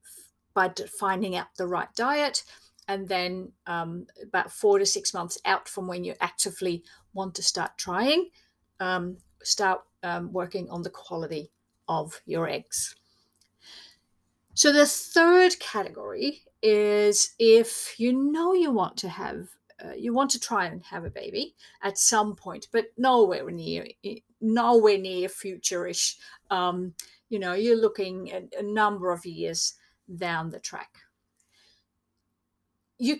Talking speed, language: 135 wpm, English